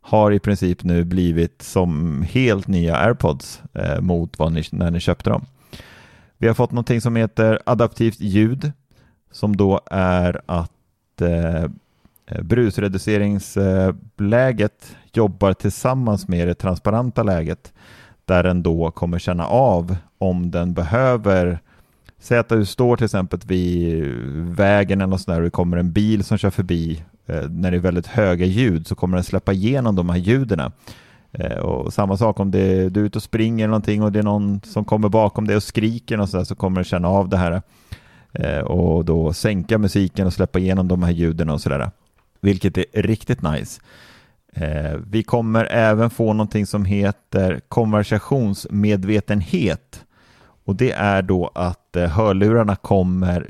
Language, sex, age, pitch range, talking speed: Swedish, male, 30-49, 90-110 Hz, 155 wpm